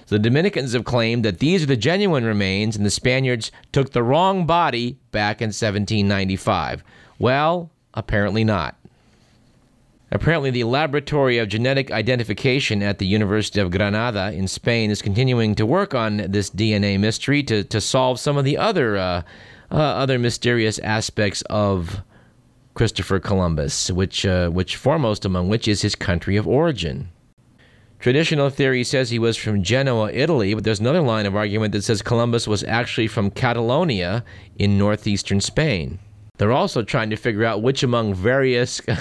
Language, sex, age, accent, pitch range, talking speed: English, male, 40-59, American, 100-125 Hz, 160 wpm